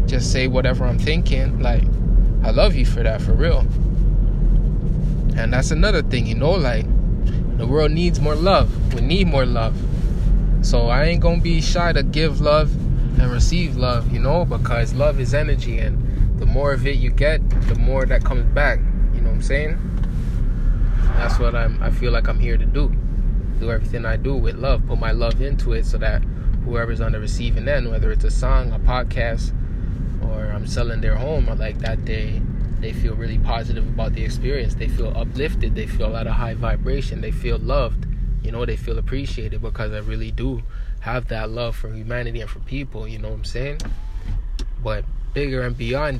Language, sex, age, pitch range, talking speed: English, male, 20-39, 110-125 Hz, 195 wpm